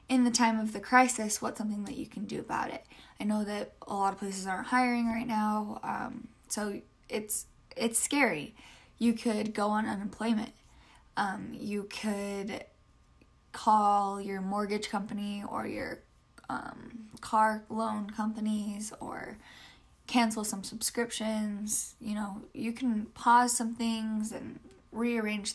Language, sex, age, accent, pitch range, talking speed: English, female, 10-29, American, 205-240 Hz, 145 wpm